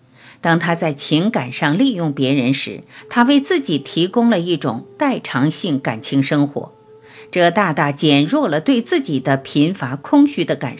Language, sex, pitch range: Chinese, female, 135-210 Hz